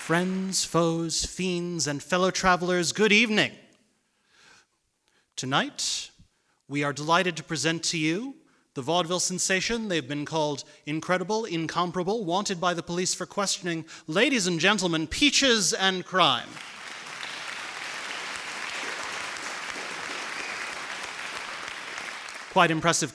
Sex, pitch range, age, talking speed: male, 150-185 Hz, 30-49, 100 wpm